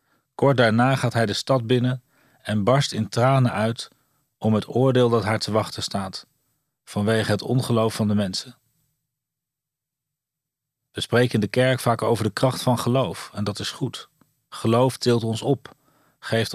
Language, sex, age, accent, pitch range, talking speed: Dutch, male, 40-59, Dutch, 115-135 Hz, 165 wpm